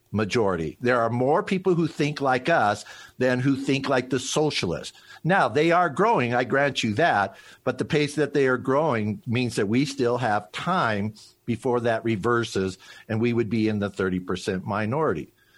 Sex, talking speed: male, 180 wpm